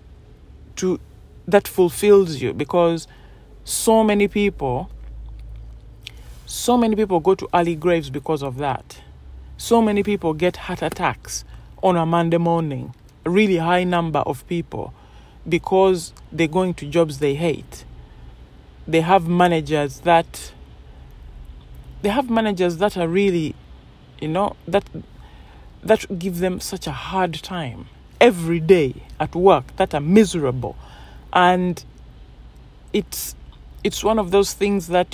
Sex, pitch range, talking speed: male, 120-185 Hz, 130 wpm